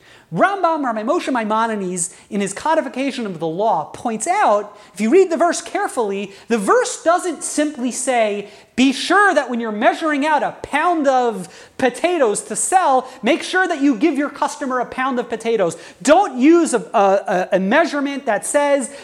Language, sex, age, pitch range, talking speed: English, male, 30-49, 240-340 Hz, 170 wpm